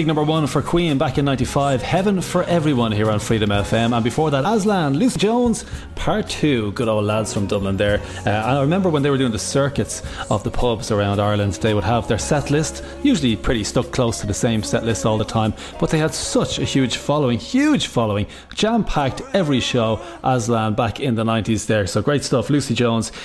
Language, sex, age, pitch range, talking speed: English, male, 30-49, 110-155 Hz, 220 wpm